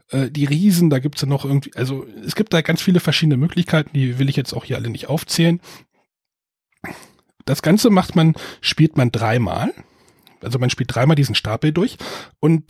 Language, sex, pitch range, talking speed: German, male, 125-165 Hz, 190 wpm